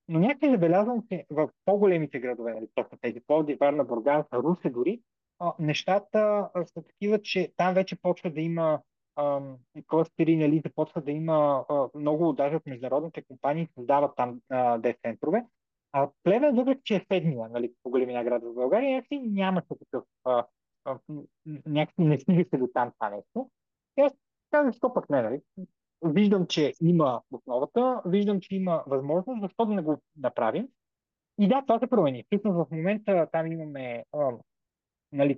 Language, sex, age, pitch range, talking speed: Bulgarian, male, 30-49, 135-185 Hz, 160 wpm